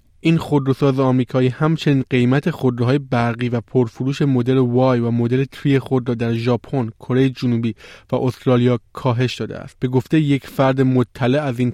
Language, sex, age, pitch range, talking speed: Persian, male, 20-39, 125-150 Hz, 165 wpm